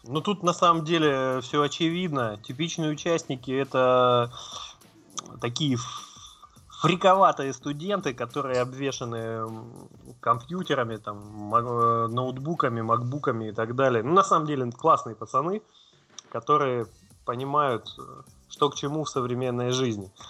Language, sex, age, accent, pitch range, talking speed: Russian, male, 20-39, native, 120-150 Hz, 110 wpm